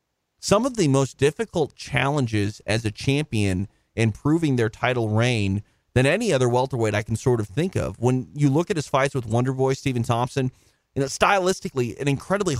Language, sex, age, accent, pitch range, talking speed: English, male, 30-49, American, 110-145 Hz, 185 wpm